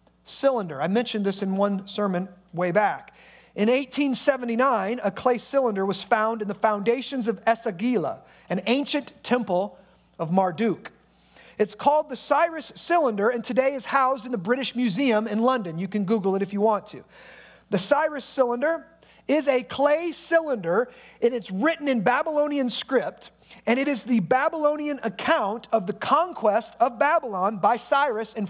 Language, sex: English, male